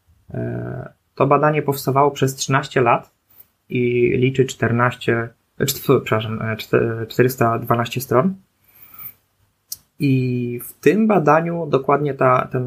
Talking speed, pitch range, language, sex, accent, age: 95 wpm, 115-135 Hz, Polish, male, native, 20-39